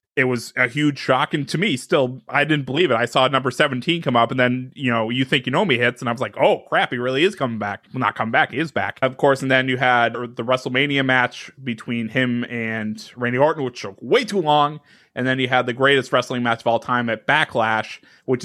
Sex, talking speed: male, 260 wpm